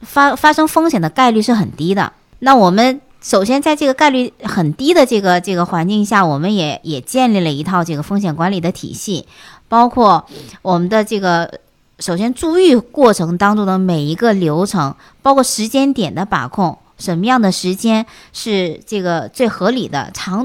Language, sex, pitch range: Chinese, male, 170-235 Hz